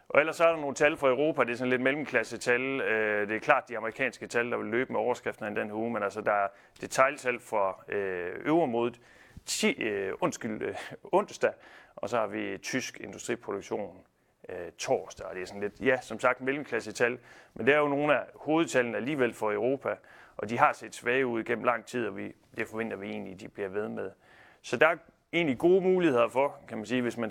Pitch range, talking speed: 105-130 Hz, 215 wpm